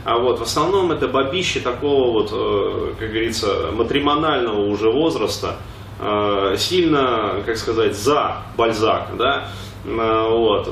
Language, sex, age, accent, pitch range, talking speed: Russian, male, 20-39, native, 105-145 Hz, 110 wpm